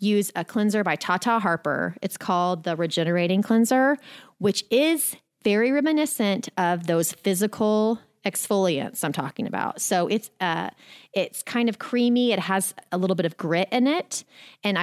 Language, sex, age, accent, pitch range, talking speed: English, female, 30-49, American, 175-215 Hz, 160 wpm